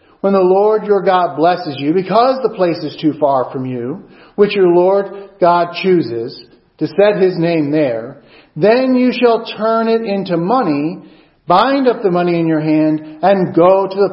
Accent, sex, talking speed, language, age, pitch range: American, male, 185 wpm, English, 50-69, 165-235 Hz